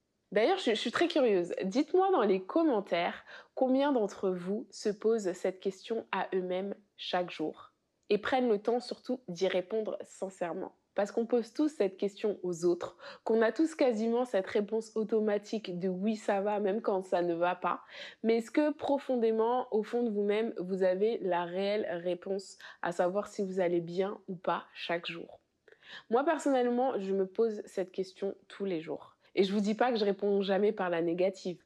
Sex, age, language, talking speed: female, 20-39, French, 190 wpm